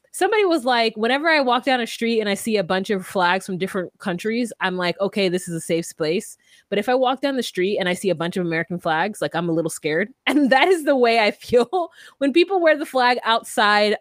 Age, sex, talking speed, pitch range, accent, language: 20-39, female, 255 wpm, 190-265 Hz, American, English